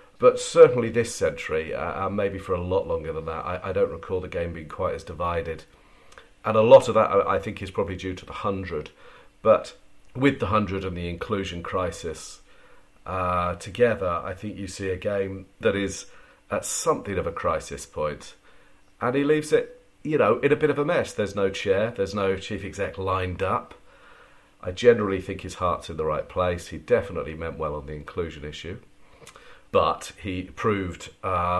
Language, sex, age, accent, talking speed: English, male, 40-59, British, 195 wpm